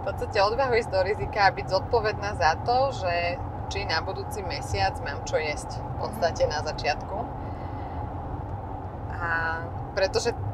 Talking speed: 140 wpm